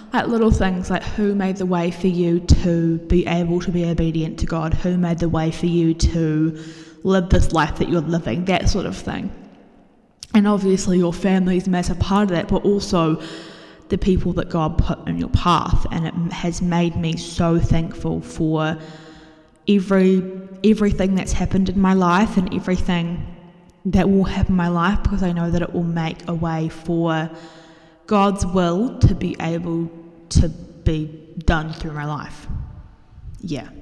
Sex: female